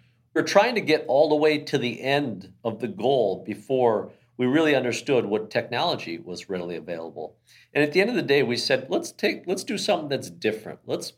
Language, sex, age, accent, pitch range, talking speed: English, male, 50-69, American, 105-130 Hz, 210 wpm